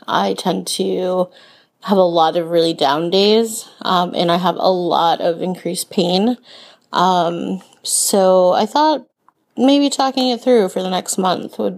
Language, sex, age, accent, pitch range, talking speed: English, female, 30-49, American, 180-220 Hz, 165 wpm